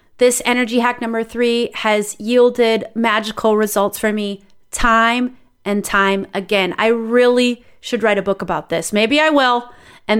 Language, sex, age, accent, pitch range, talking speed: English, female, 30-49, American, 200-245 Hz, 160 wpm